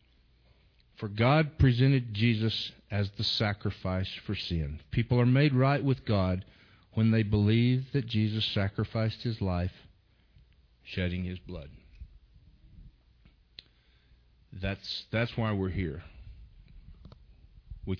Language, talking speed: English, 105 wpm